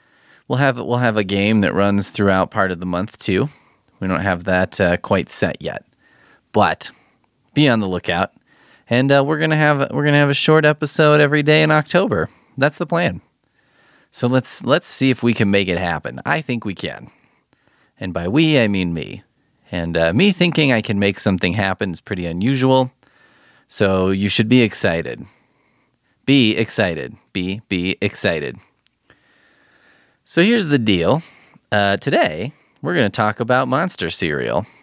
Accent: American